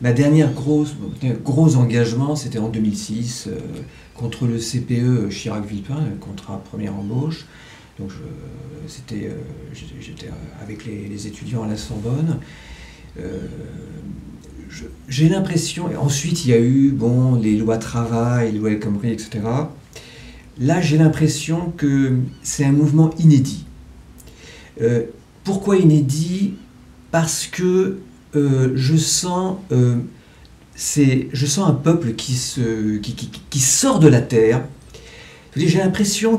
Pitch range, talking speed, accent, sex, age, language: 115-150 Hz, 135 wpm, French, male, 50-69, French